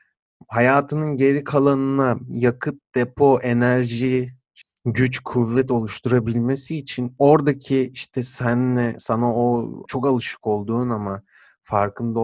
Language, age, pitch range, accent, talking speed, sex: Turkish, 30-49, 110-135 Hz, native, 100 wpm, male